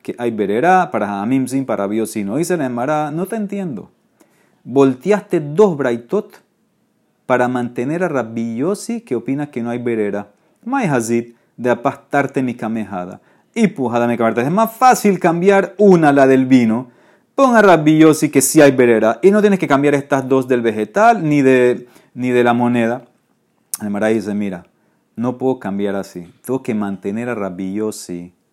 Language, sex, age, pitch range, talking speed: Spanish, male, 40-59, 105-135 Hz, 165 wpm